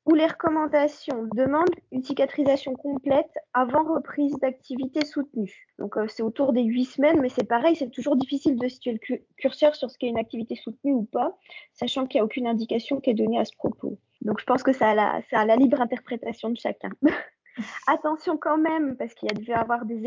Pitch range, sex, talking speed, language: 220-280 Hz, female, 215 wpm, French